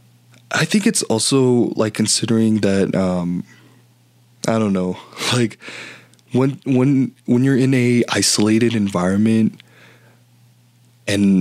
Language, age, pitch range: Filipino, 20-39, 95-120 Hz